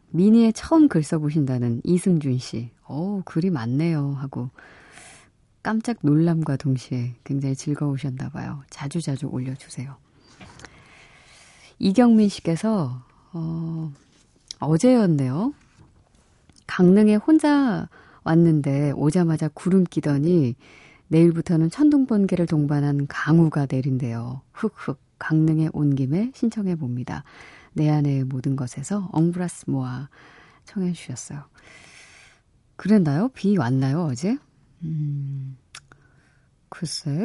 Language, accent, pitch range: Korean, native, 140-180 Hz